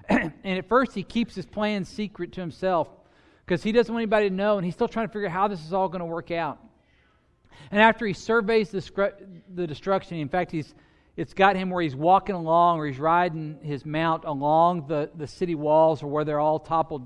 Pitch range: 140-195 Hz